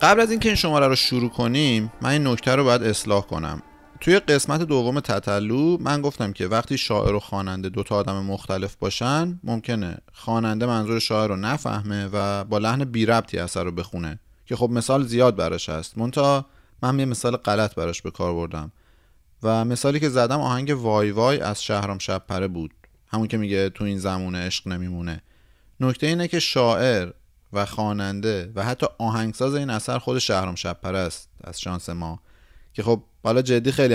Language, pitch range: Persian, 95-125 Hz